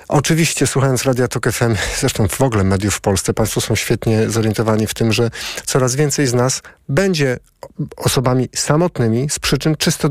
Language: Polish